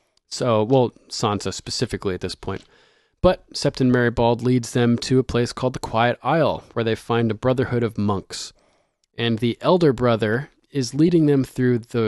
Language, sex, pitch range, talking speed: English, male, 105-130 Hz, 175 wpm